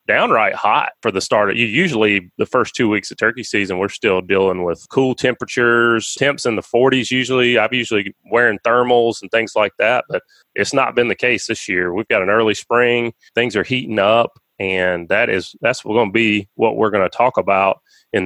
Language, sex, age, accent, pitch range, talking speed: English, male, 30-49, American, 100-130 Hz, 215 wpm